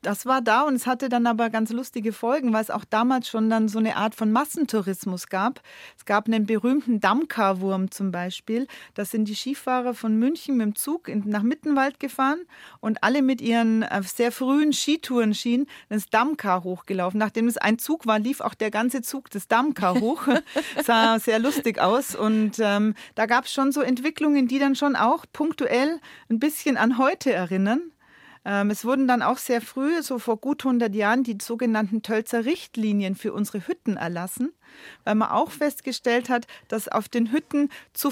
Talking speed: 185 wpm